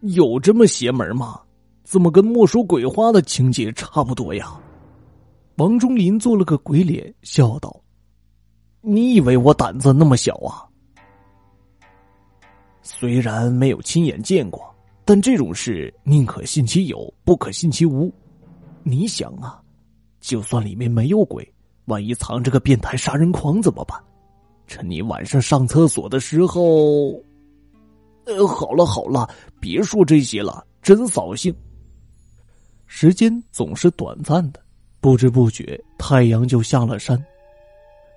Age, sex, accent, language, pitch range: 30-49, male, native, Chinese, 115-170 Hz